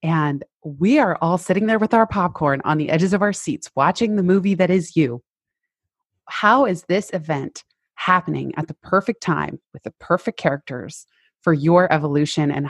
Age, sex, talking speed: 30-49, female, 180 wpm